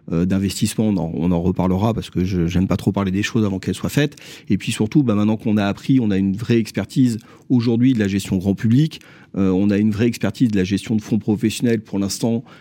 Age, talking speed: 40-59, 250 wpm